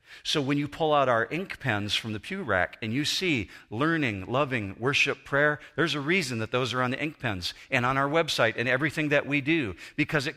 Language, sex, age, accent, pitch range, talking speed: English, male, 40-59, American, 120-165 Hz, 230 wpm